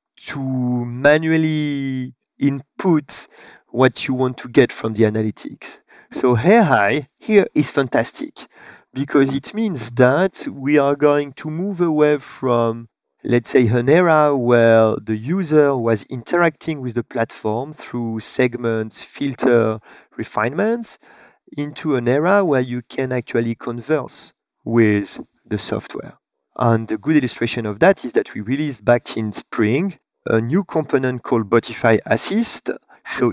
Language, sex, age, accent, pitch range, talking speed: English, male, 40-59, French, 115-150 Hz, 135 wpm